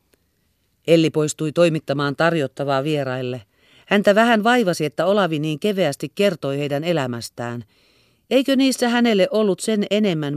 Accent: native